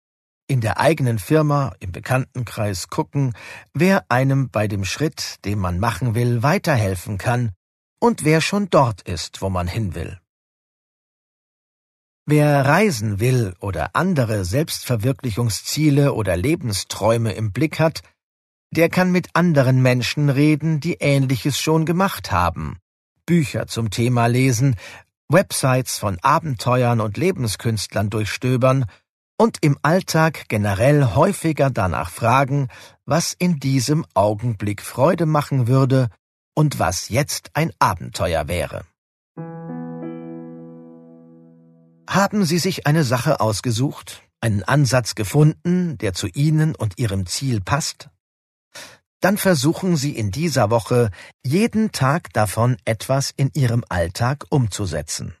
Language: German